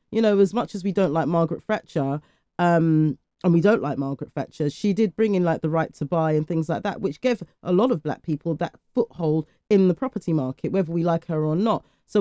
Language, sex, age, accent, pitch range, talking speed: English, female, 30-49, British, 160-205 Hz, 245 wpm